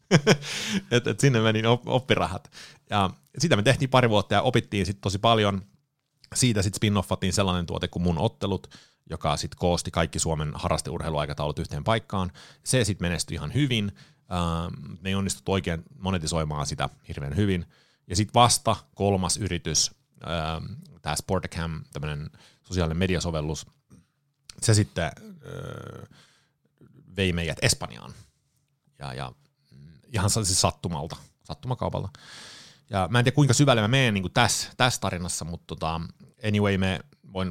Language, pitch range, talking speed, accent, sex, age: Finnish, 85-120 Hz, 135 wpm, native, male, 30-49